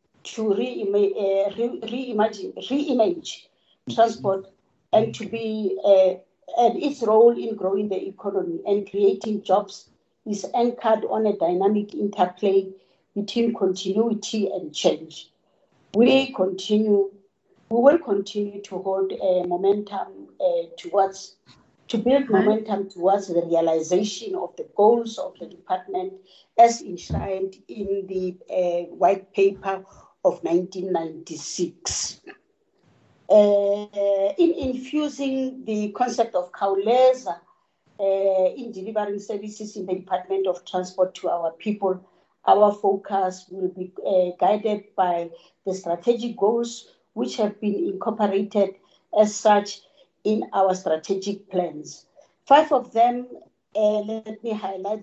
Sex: female